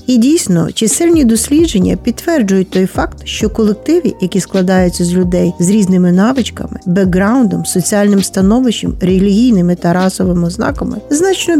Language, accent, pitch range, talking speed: Ukrainian, native, 200-265 Hz, 125 wpm